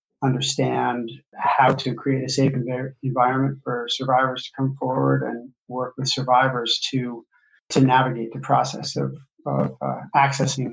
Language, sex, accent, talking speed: English, male, American, 145 wpm